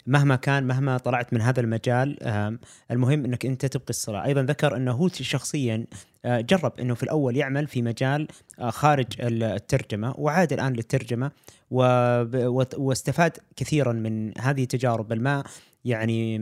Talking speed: 130 wpm